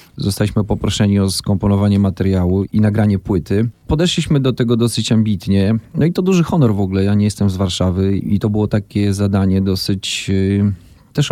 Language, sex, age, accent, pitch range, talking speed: Polish, male, 40-59, native, 95-120 Hz, 170 wpm